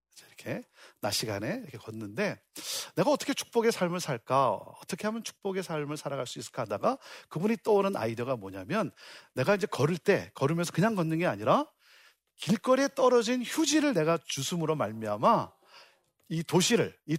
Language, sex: Korean, male